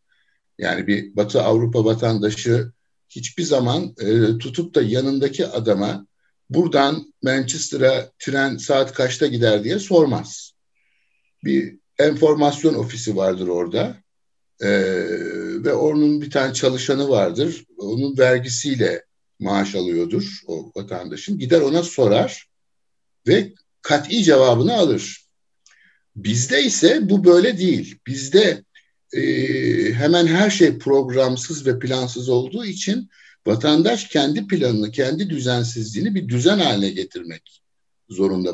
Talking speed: 110 wpm